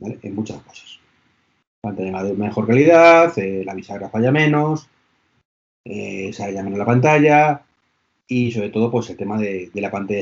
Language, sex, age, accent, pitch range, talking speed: Spanish, male, 30-49, Spanish, 110-155 Hz, 170 wpm